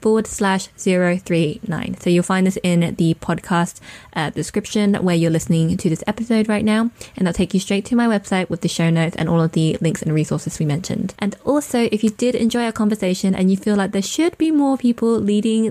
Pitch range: 175-215 Hz